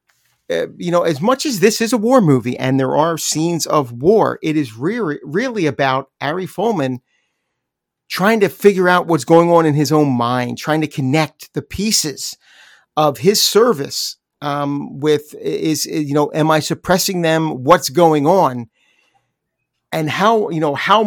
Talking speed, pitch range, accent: 170 wpm, 135-165 Hz, American